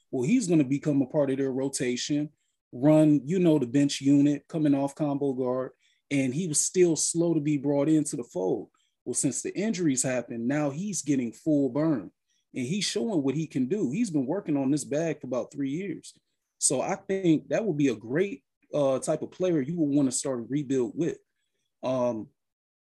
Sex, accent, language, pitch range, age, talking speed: male, American, English, 135-160 Hz, 30-49, 205 wpm